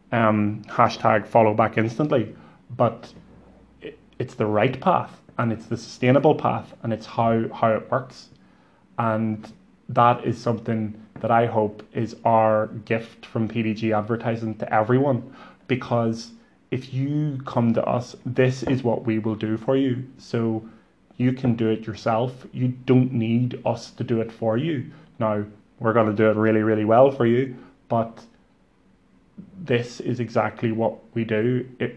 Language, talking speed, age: English, 160 wpm, 20-39